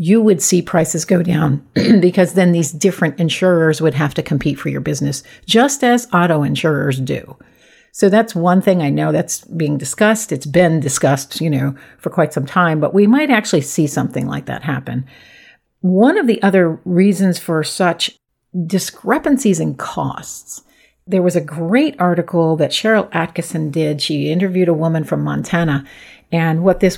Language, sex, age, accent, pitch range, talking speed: English, female, 50-69, American, 160-200 Hz, 175 wpm